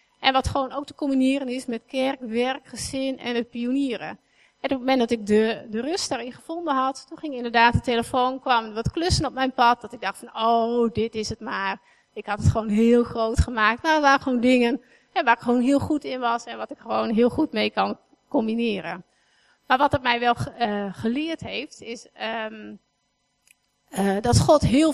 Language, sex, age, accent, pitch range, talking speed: Dutch, female, 30-49, Dutch, 225-265 Hz, 205 wpm